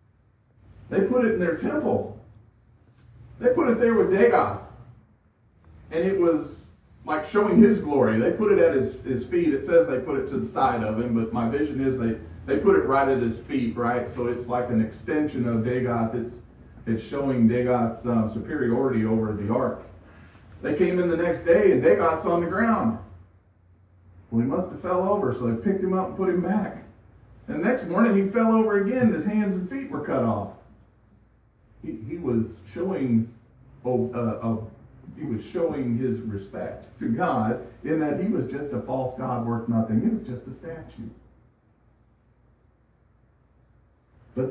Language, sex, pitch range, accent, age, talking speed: English, male, 110-155 Hz, American, 40-59, 185 wpm